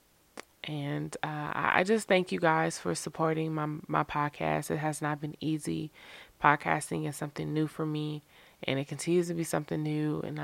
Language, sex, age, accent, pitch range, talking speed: English, female, 20-39, American, 145-165 Hz, 180 wpm